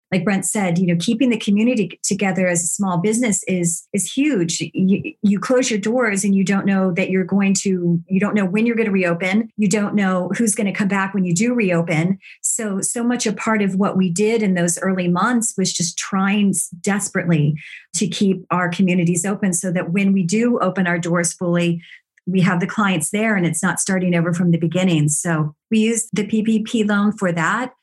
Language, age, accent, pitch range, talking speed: English, 40-59, American, 175-205 Hz, 215 wpm